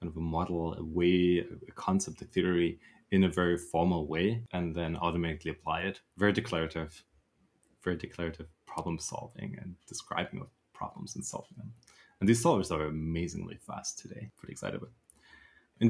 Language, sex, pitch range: English, male, 85-105 Hz